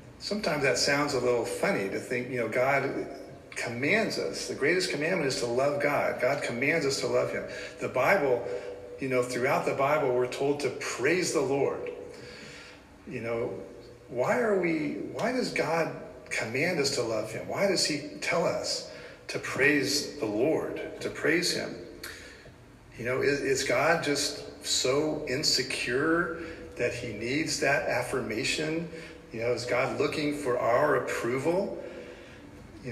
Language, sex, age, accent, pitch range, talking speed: English, male, 40-59, American, 115-165 Hz, 155 wpm